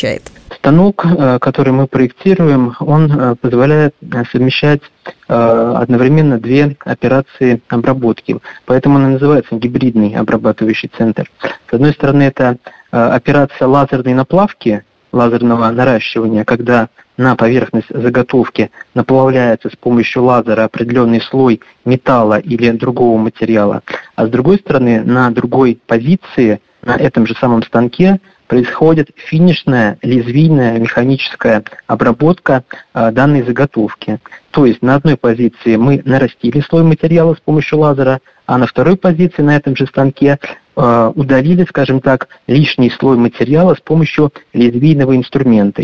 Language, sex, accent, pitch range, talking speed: Russian, male, native, 120-145 Hz, 115 wpm